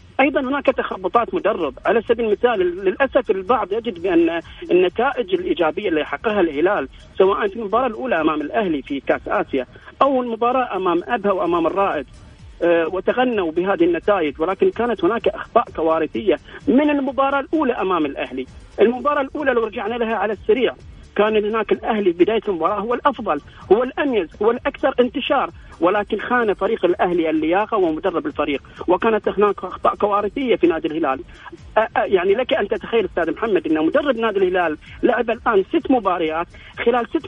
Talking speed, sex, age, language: 155 wpm, male, 40-59, Arabic